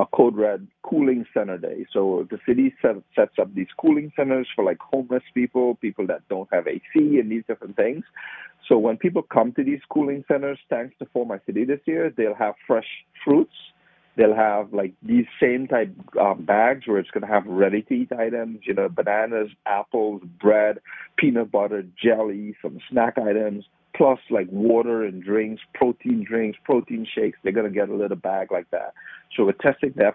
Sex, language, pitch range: male, English, 105-150 Hz